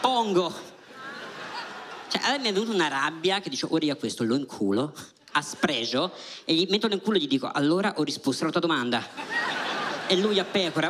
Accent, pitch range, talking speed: native, 125-190 Hz, 200 wpm